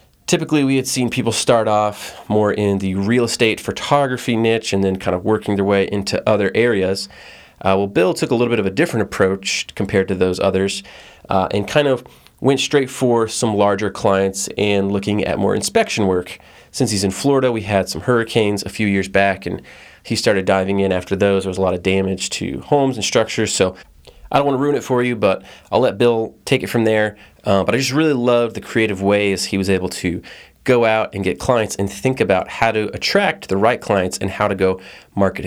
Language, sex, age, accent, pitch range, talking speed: English, male, 30-49, American, 95-115 Hz, 225 wpm